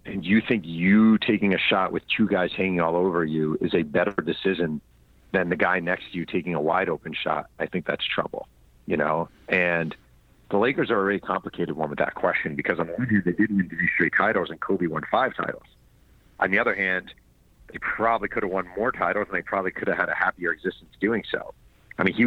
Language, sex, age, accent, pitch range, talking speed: English, male, 40-59, American, 75-100 Hz, 235 wpm